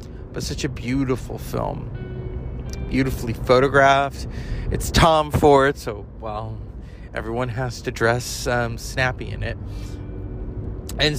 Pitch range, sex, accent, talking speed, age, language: 110-150 Hz, male, American, 115 wpm, 30-49, English